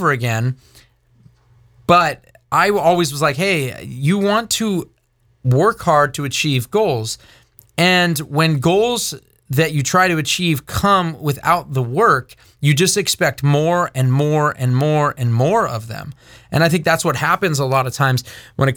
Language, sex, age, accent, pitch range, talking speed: English, male, 30-49, American, 120-160 Hz, 165 wpm